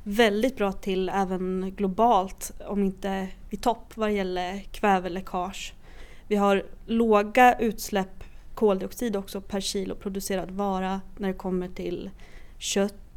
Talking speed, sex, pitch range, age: 125 wpm, female, 190-220 Hz, 20-39